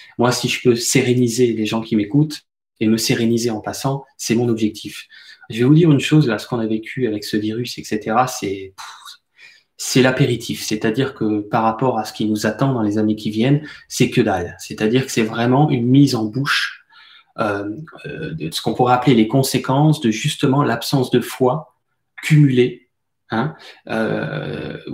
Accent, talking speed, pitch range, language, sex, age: French, 185 wpm, 110-130 Hz, French, male, 20-39